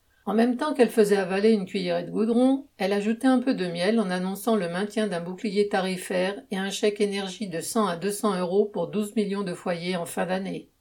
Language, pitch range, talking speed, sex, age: French, 180-220 Hz, 220 wpm, female, 50-69